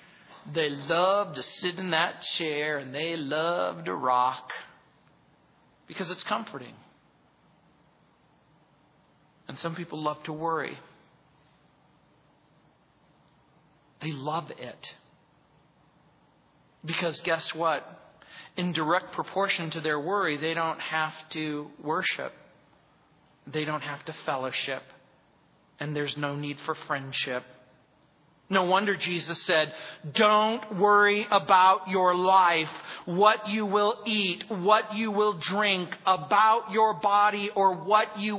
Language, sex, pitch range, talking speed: English, male, 155-220 Hz, 115 wpm